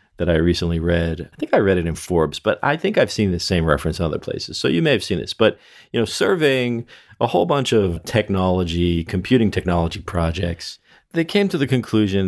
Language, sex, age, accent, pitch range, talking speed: English, male, 40-59, American, 85-120 Hz, 220 wpm